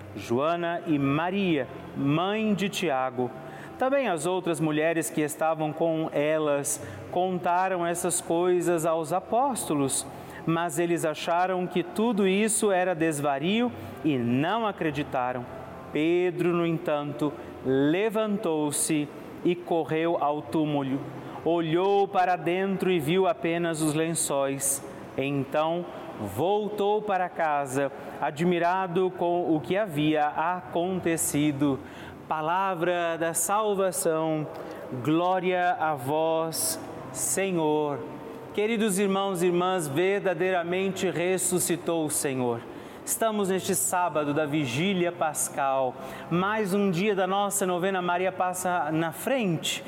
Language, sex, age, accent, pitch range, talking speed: Portuguese, male, 40-59, Brazilian, 150-185 Hz, 105 wpm